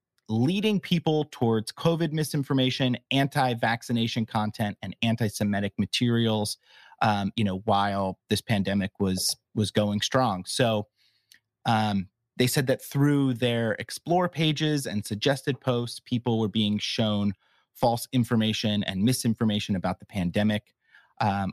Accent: American